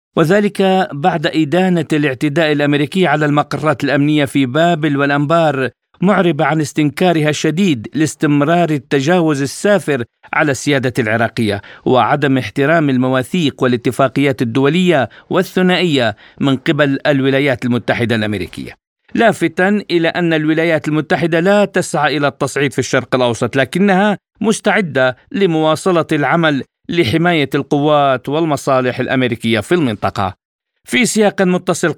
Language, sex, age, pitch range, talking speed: Arabic, male, 50-69, 135-170 Hz, 105 wpm